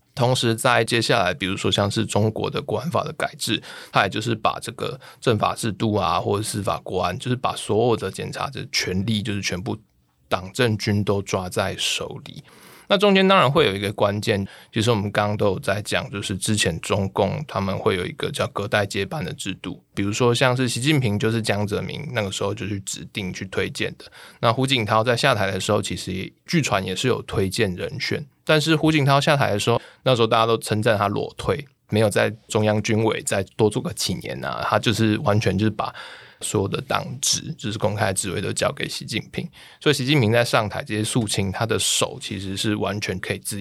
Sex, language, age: male, Chinese, 20-39